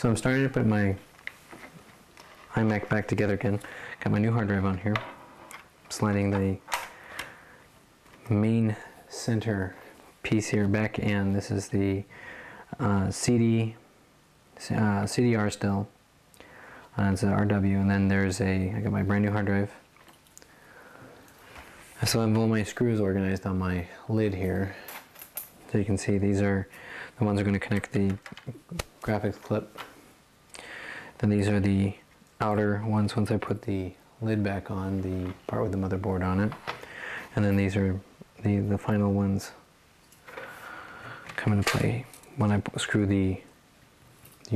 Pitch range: 100-110 Hz